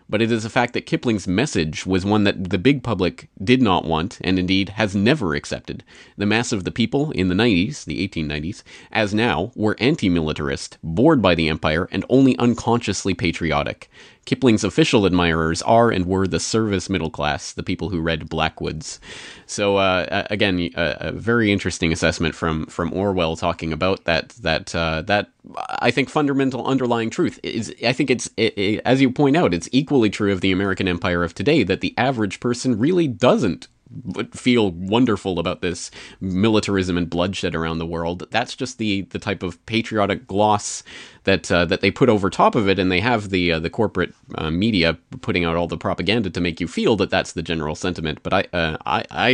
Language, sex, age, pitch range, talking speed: English, male, 30-49, 85-105 Hz, 190 wpm